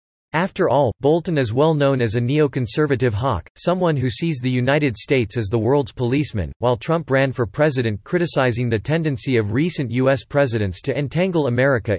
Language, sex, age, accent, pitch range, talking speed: English, male, 40-59, American, 120-145 Hz, 175 wpm